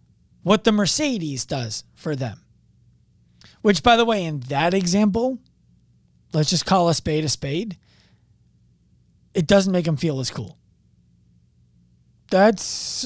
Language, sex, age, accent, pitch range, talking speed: English, male, 30-49, American, 125-210 Hz, 130 wpm